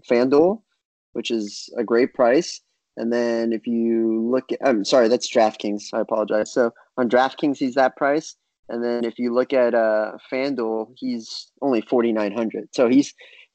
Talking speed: 165 wpm